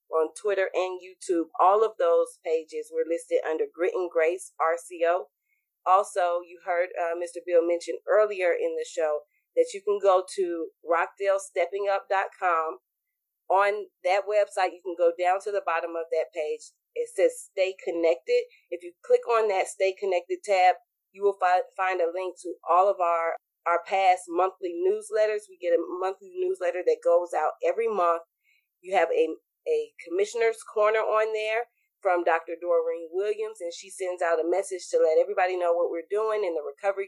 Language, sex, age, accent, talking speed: English, female, 30-49, American, 175 wpm